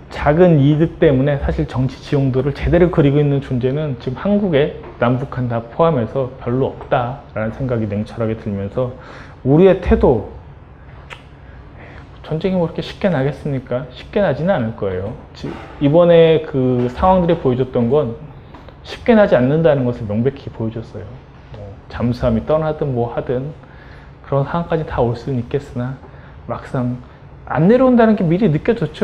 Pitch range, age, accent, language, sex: 125-170 Hz, 20-39, native, Korean, male